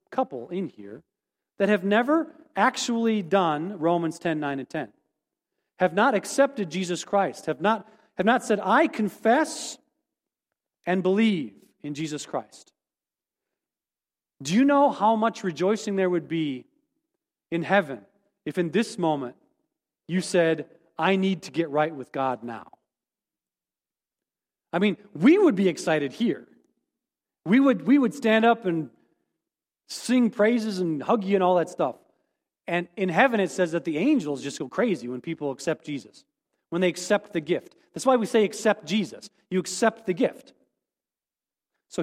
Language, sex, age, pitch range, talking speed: English, male, 40-59, 165-235 Hz, 155 wpm